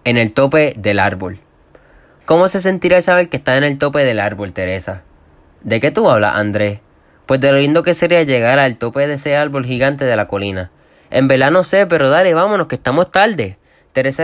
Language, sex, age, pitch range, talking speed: Spanish, male, 20-39, 105-150 Hz, 210 wpm